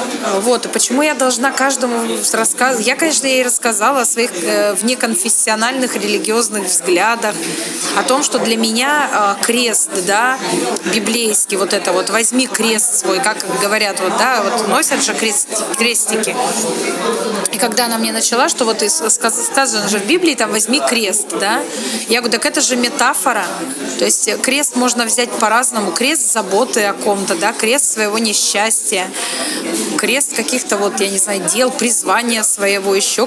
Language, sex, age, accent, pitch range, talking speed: Russian, female, 20-39, native, 210-255 Hz, 155 wpm